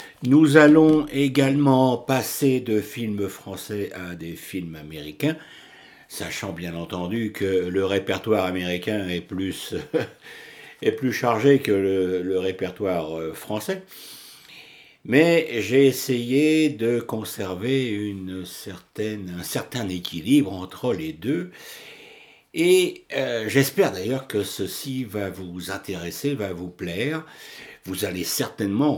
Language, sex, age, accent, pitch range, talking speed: French, male, 60-79, French, 95-150 Hz, 115 wpm